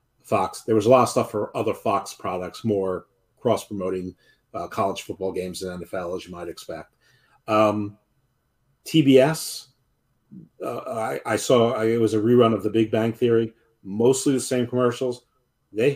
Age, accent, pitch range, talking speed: 40-59, American, 105-125 Hz, 165 wpm